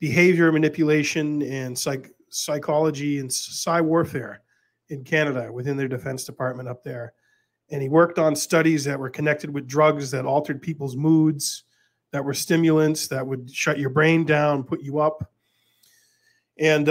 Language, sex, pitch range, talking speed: English, male, 130-155 Hz, 150 wpm